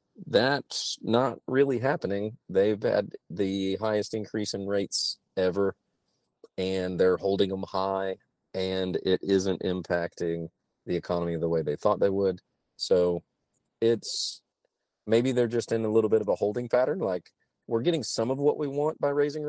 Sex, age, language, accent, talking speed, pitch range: male, 40-59, English, American, 160 wpm, 95-115 Hz